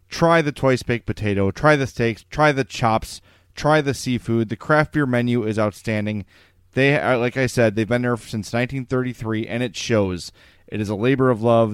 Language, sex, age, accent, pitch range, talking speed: English, male, 30-49, American, 105-135 Hz, 195 wpm